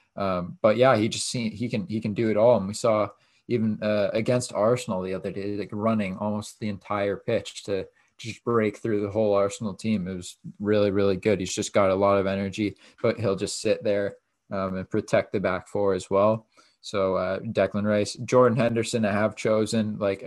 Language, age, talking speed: English, 20-39, 215 wpm